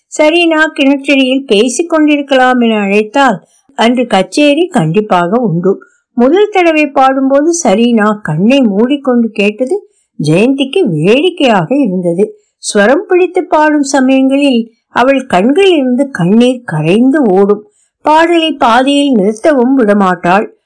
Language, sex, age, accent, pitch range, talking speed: Tamil, female, 60-79, native, 205-290 Hz, 95 wpm